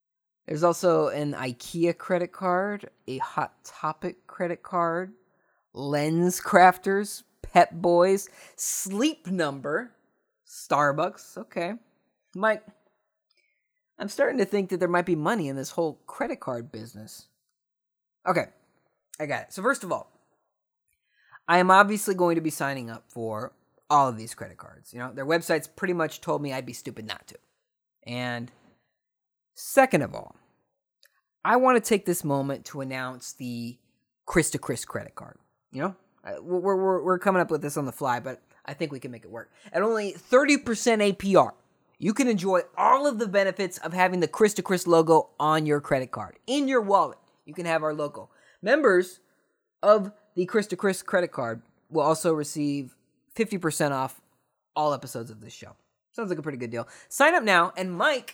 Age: 20-39